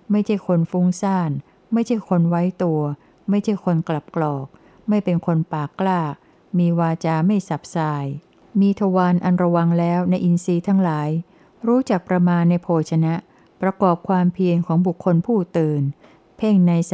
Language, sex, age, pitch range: Thai, female, 60-79, 160-190 Hz